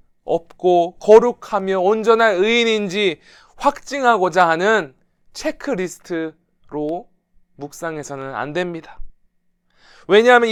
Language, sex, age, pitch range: Korean, male, 20-39, 155-215 Hz